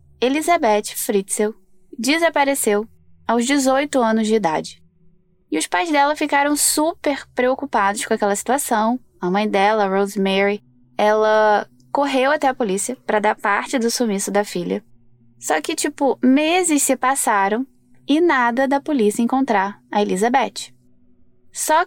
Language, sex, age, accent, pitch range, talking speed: Portuguese, female, 10-29, Brazilian, 190-260 Hz, 135 wpm